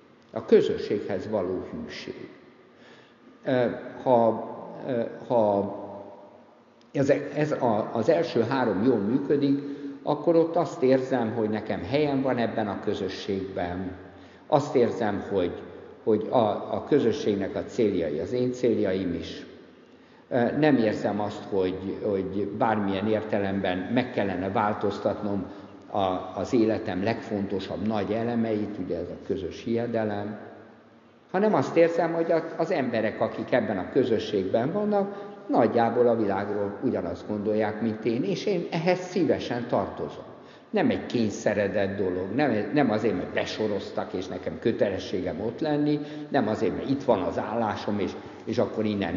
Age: 60-79